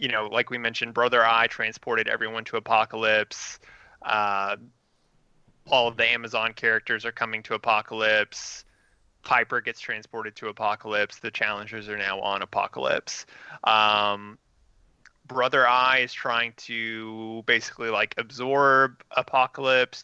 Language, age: English, 20-39